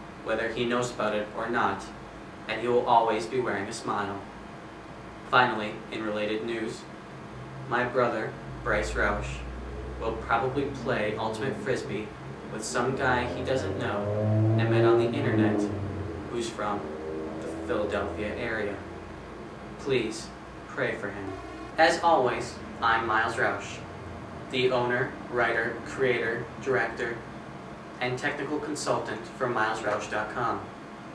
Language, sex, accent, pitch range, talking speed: English, male, American, 100-120 Hz, 120 wpm